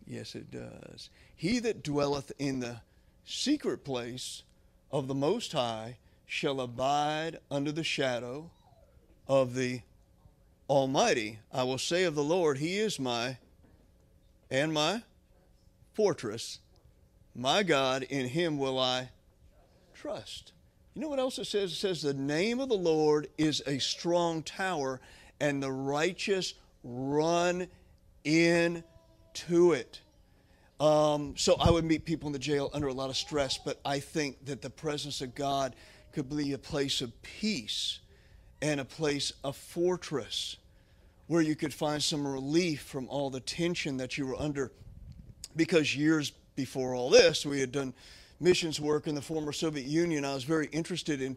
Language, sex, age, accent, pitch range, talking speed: English, male, 50-69, American, 130-160 Hz, 155 wpm